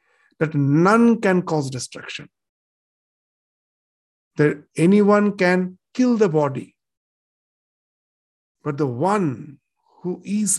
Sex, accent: male, Indian